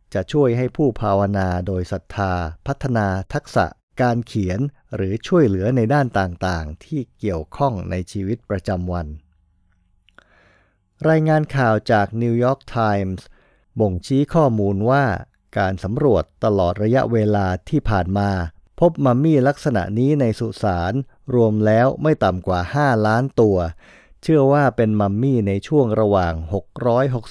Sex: male